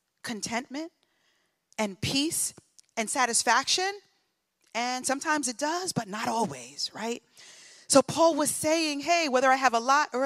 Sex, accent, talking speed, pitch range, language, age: female, American, 140 wpm, 205-285 Hz, English, 40-59